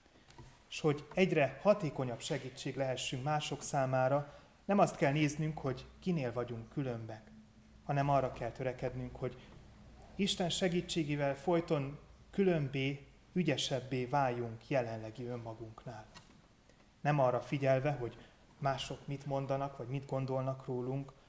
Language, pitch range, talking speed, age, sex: Hungarian, 120-150 Hz, 115 wpm, 30-49, male